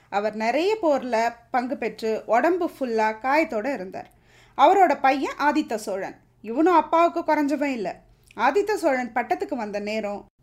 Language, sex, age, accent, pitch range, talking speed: Tamil, female, 20-39, native, 245-340 Hz, 125 wpm